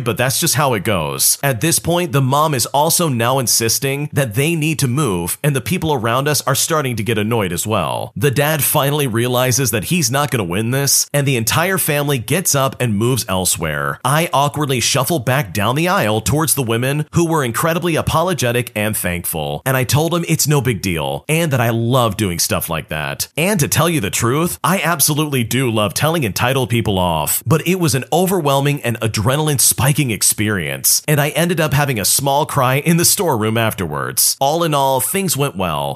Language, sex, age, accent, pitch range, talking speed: English, male, 40-59, American, 110-155 Hz, 210 wpm